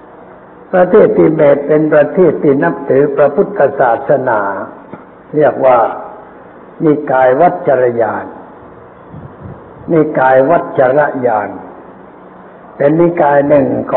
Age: 60-79